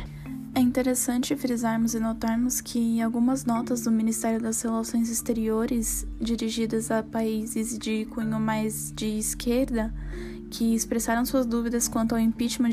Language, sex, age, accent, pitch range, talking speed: Portuguese, female, 10-29, Brazilian, 225-245 Hz, 130 wpm